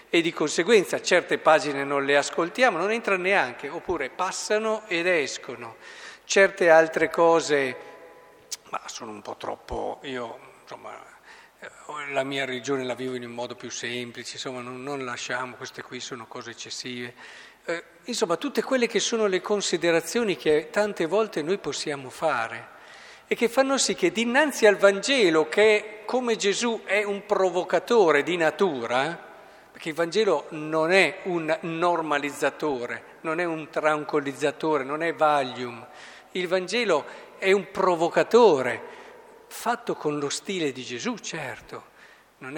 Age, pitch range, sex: 50-69, 140-205 Hz, male